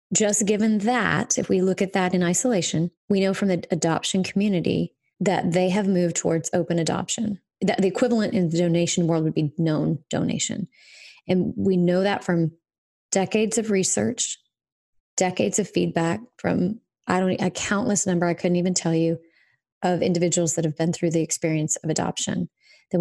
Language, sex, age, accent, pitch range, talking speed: English, female, 30-49, American, 170-200 Hz, 175 wpm